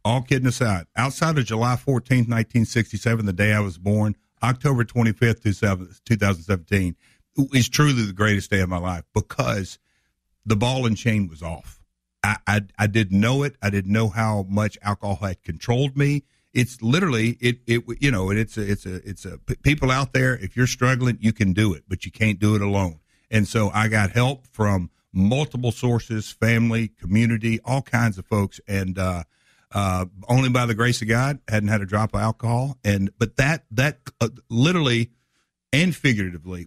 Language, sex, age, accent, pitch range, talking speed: English, male, 50-69, American, 100-125 Hz, 185 wpm